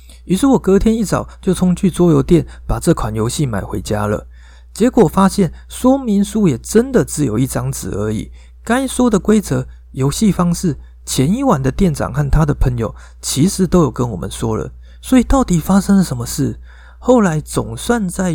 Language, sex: Chinese, male